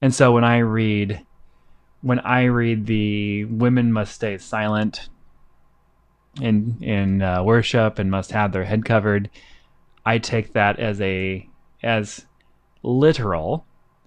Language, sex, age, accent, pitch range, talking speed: English, male, 20-39, American, 95-120 Hz, 130 wpm